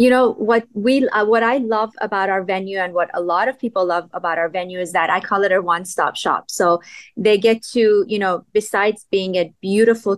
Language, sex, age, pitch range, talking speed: English, female, 30-49, 180-215 Hz, 235 wpm